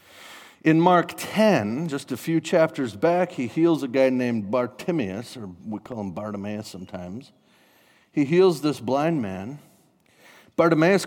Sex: male